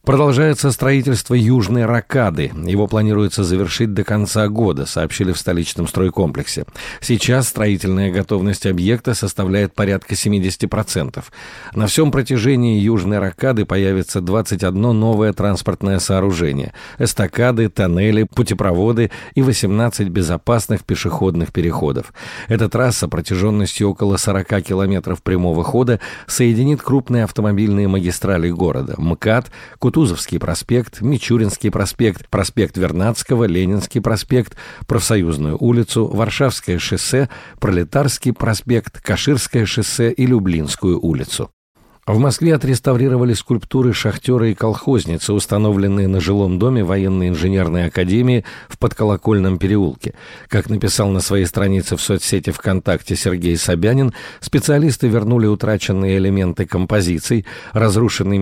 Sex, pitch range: male, 95-120 Hz